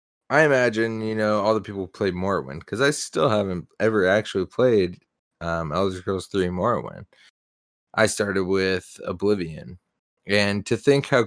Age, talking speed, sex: 20-39, 160 wpm, male